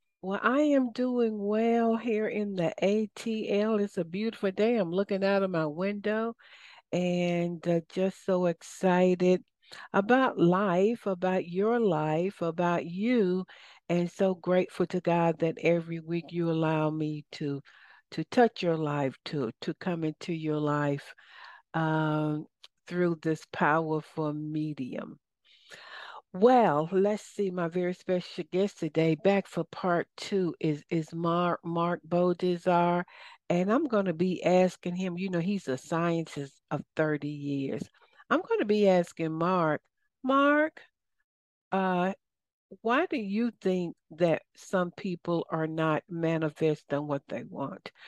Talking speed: 140 wpm